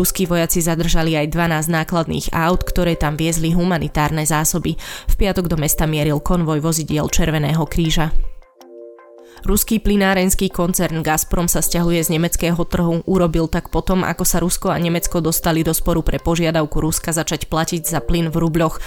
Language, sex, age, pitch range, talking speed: Slovak, female, 20-39, 160-180 Hz, 160 wpm